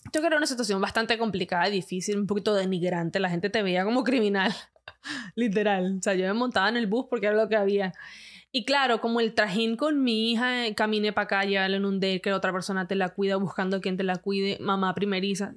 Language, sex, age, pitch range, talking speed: Spanish, female, 20-39, 190-225 Hz, 240 wpm